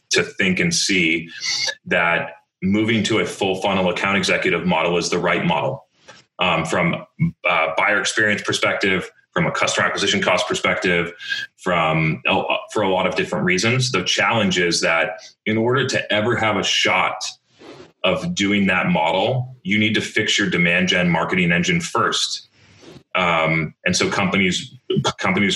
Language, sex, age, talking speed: English, male, 30-49, 155 wpm